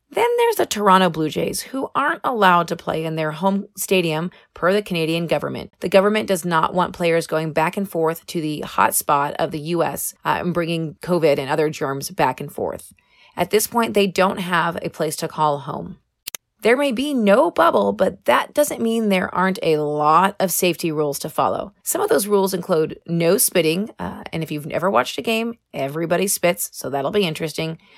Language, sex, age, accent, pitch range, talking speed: English, female, 30-49, American, 160-210 Hz, 205 wpm